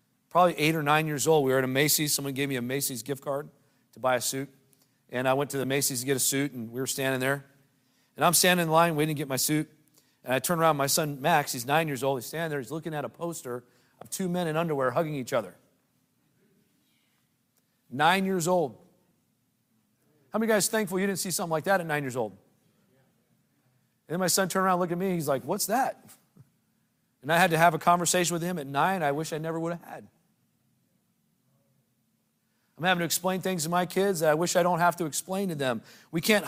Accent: American